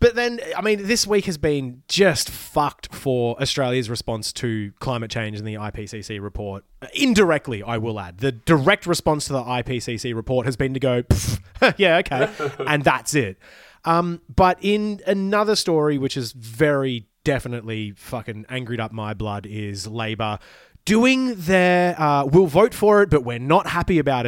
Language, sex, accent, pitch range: English, male, Australian, 115-175 Hz